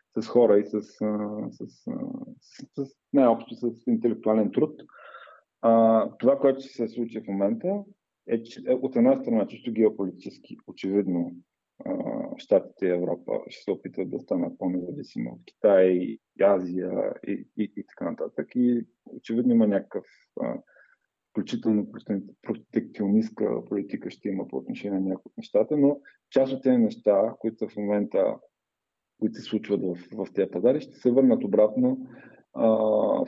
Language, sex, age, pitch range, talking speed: Bulgarian, male, 20-39, 100-135 Hz, 150 wpm